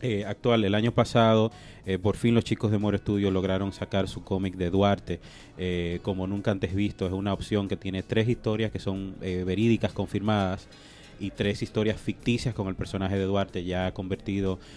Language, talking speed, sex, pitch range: English, 190 wpm, male, 95-115 Hz